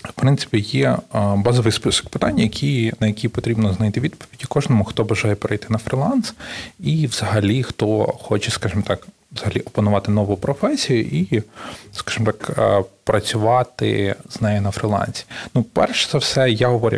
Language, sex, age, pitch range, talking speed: Ukrainian, male, 30-49, 105-130 Hz, 150 wpm